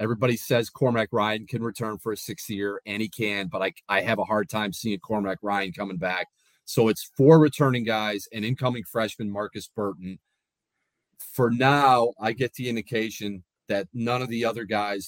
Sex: male